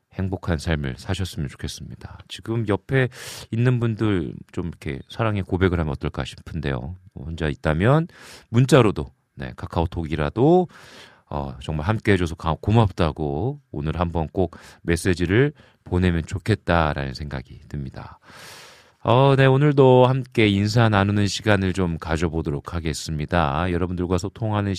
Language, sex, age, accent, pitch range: Korean, male, 40-59, native, 80-115 Hz